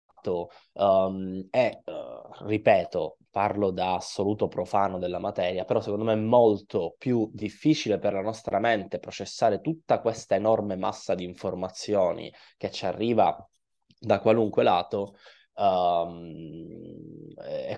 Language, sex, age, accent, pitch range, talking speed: Italian, male, 20-39, native, 95-120 Hz, 110 wpm